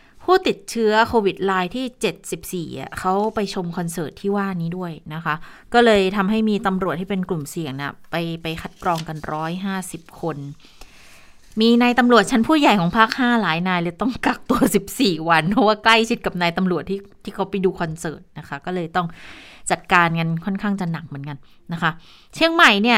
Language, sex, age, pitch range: Thai, female, 20-39, 165-205 Hz